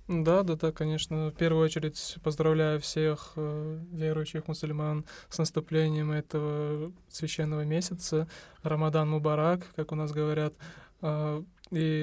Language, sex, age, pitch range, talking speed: Russian, male, 20-39, 150-160 Hz, 115 wpm